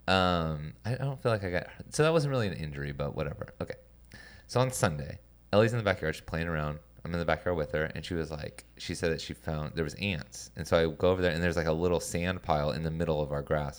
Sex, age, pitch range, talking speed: male, 20-39, 75-90 Hz, 275 wpm